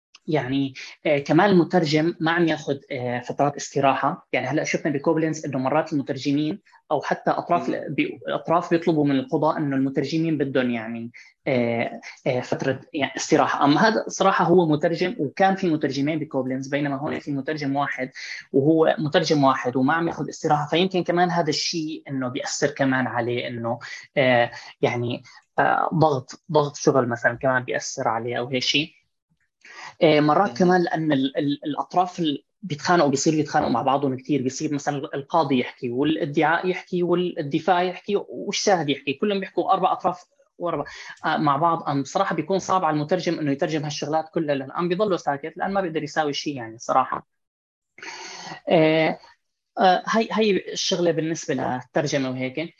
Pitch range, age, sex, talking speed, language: 140-170 Hz, 20-39, female, 140 wpm, Arabic